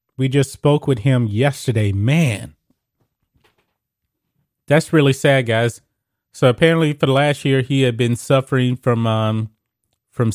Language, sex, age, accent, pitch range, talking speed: English, male, 30-49, American, 115-140 Hz, 140 wpm